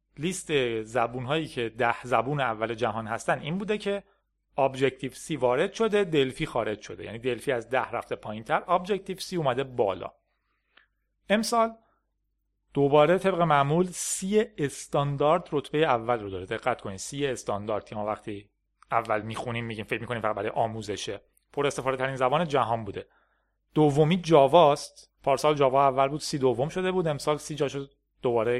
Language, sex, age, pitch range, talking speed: Persian, male, 30-49, 125-170 Hz, 155 wpm